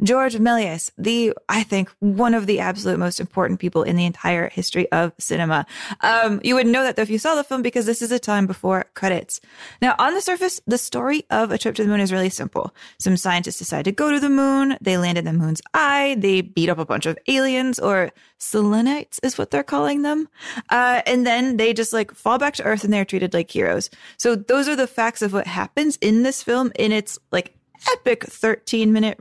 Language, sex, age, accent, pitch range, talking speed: English, female, 20-39, American, 190-260 Hz, 225 wpm